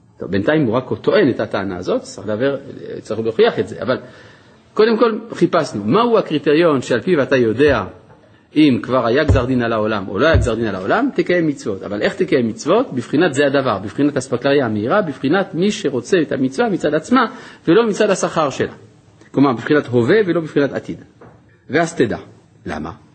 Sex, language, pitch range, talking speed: male, Hebrew, 110-155 Hz, 175 wpm